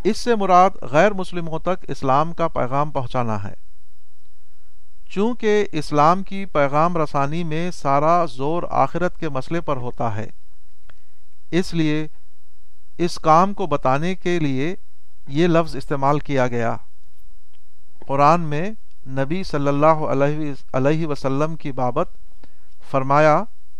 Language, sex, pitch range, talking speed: Urdu, male, 105-165 Hz, 120 wpm